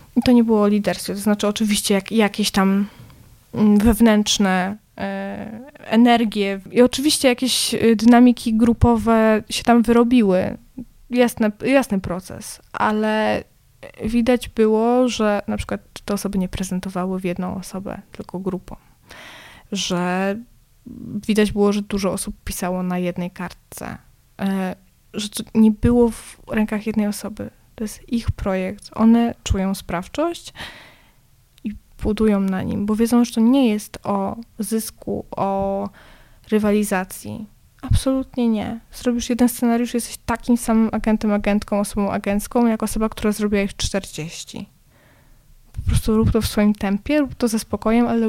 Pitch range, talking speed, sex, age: 195-235 Hz, 135 wpm, female, 20-39